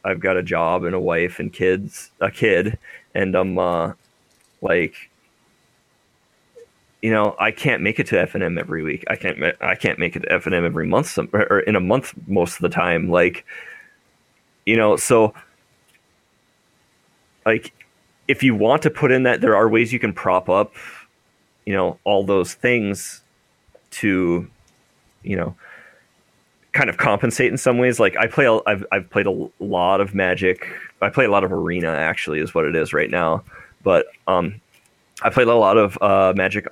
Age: 30-49